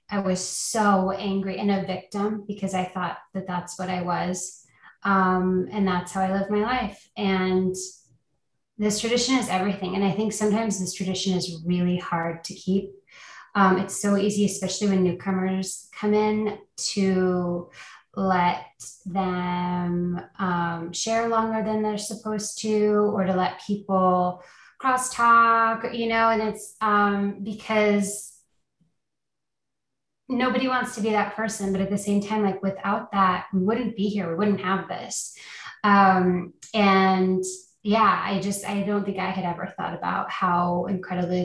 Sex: female